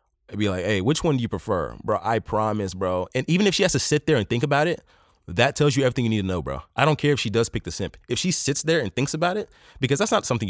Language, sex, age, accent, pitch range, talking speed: English, male, 20-39, American, 105-155 Hz, 310 wpm